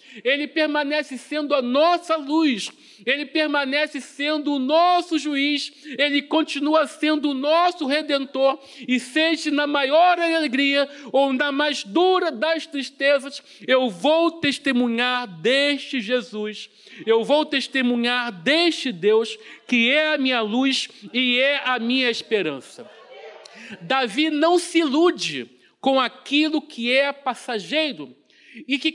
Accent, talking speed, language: Brazilian, 125 wpm, Portuguese